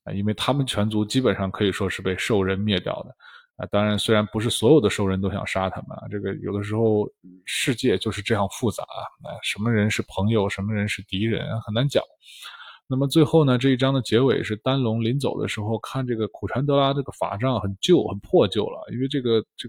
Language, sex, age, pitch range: Chinese, male, 20-39, 105-135 Hz